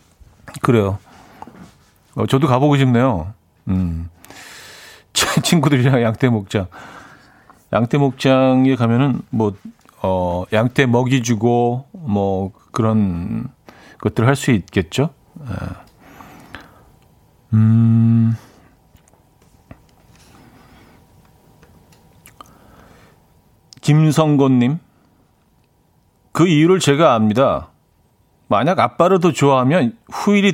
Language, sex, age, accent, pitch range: Korean, male, 40-59, native, 105-140 Hz